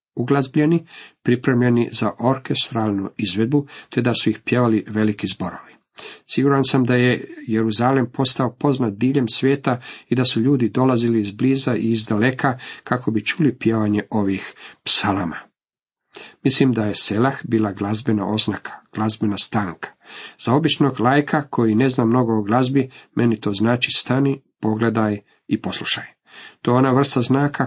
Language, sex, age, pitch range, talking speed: Croatian, male, 50-69, 110-135 Hz, 140 wpm